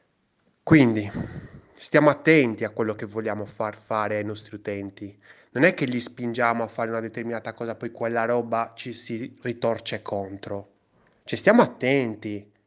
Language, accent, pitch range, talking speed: Italian, native, 110-150 Hz, 150 wpm